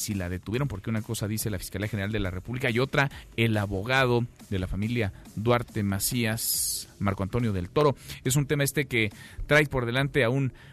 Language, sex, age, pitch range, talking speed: Spanish, male, 40-59, 115-155 Hz, 195 wpm